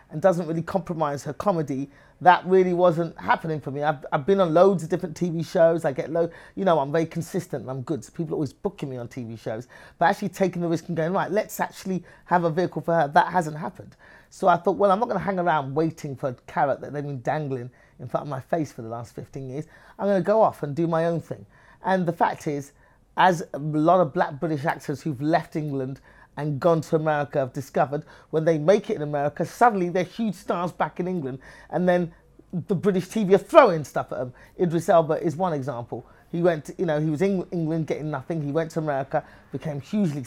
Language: English